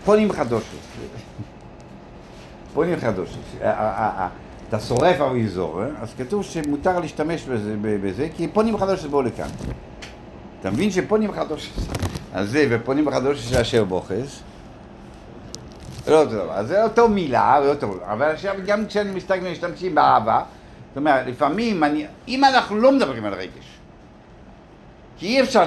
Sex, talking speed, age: male, 125 wpm, 60-79